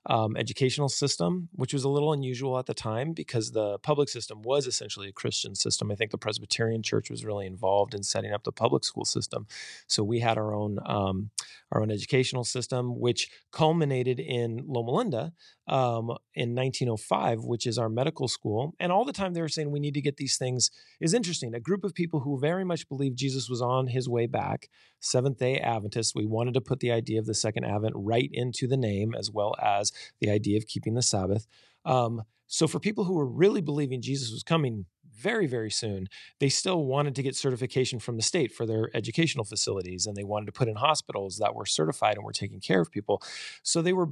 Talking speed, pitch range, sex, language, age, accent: 215 wpm, 110-145 Hz, male, English, 30-49, American